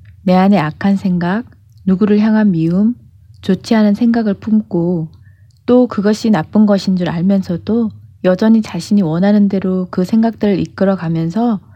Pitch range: 165-215 Hz